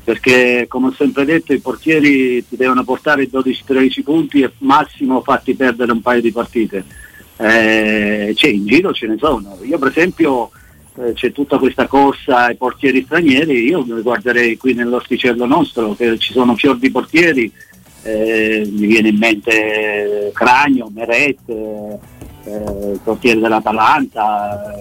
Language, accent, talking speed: Italian, native, 150 wpm